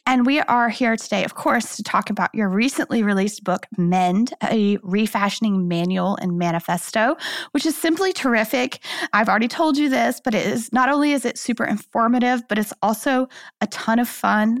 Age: 20-39